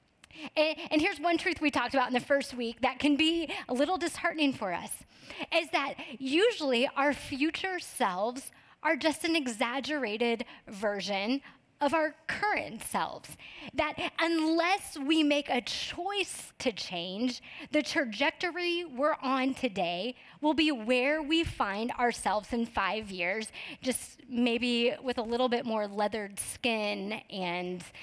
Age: 20-39